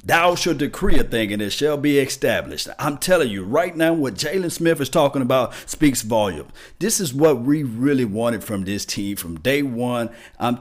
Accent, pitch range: American, 115-150 Hz